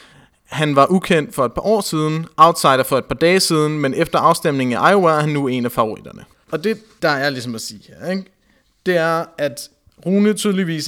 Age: 30-49